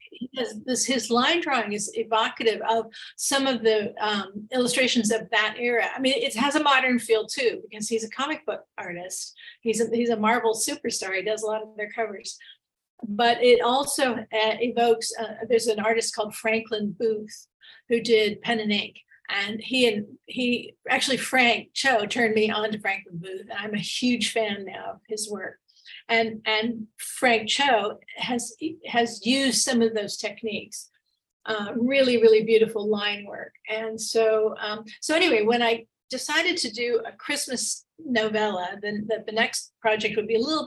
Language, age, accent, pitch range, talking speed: English, 50-69, American, 215-250 Hz, 180 wpm